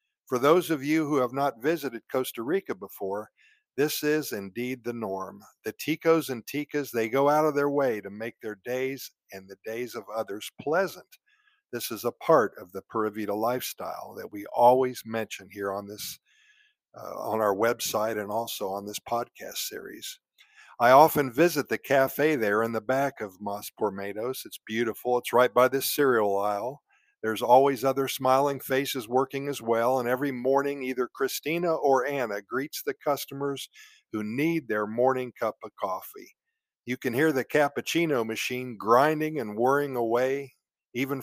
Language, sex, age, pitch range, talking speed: English, male, 50-69, 115-145 Hz, 170 wpm